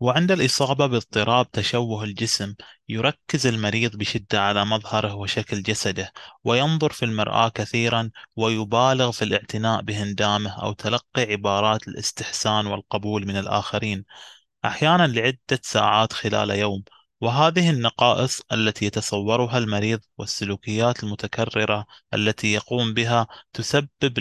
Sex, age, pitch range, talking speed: male, 20-39, 105-120 Hz, 105 wpm